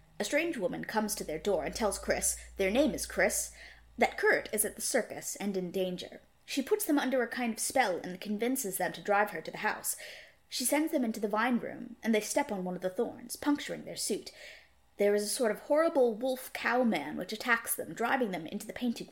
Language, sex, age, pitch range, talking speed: English, female, 20-39, 195-260 Hz, 225 wpm